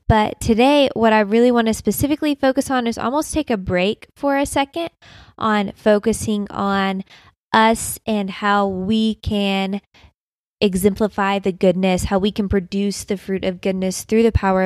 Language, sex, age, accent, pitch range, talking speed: English, female, 10-29, American, 195-230 Hz, 165 wpm